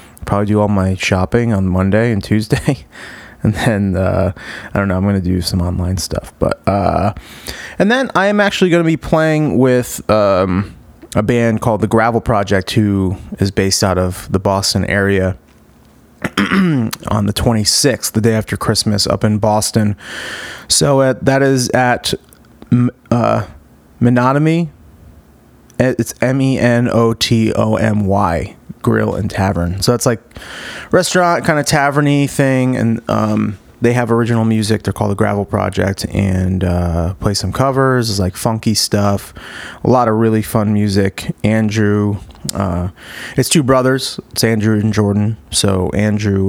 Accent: American